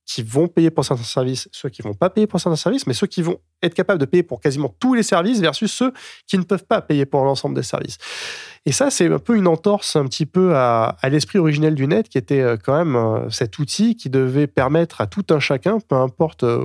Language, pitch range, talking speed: French, 135-180 Hz, 250 wpm